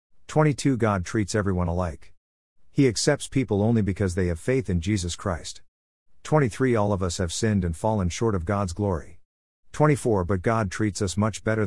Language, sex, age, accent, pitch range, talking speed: English, male, 50-69, American, 90-115 Hz, 180 wpm